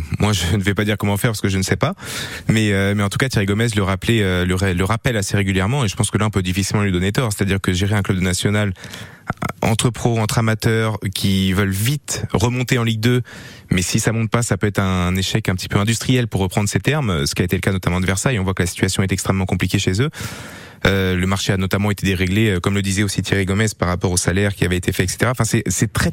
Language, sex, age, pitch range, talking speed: French, male, 20-39, 95-115 Hz, 285 wpm